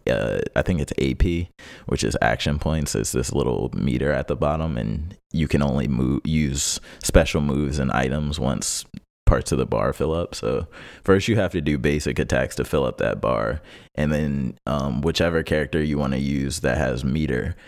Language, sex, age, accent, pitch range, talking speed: English, male, 30-49, American, 65-80 Hz, 195 wpm